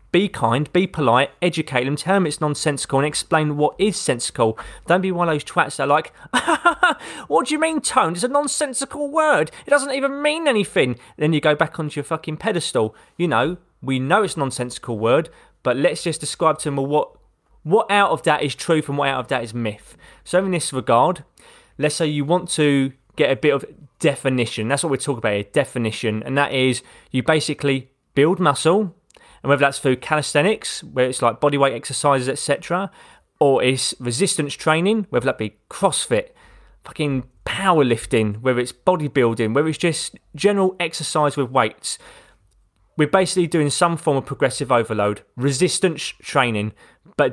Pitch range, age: 130-170 Hz, 20-39